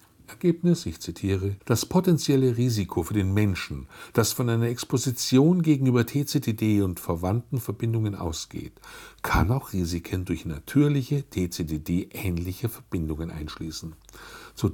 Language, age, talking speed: German, 60-79, 115 wpm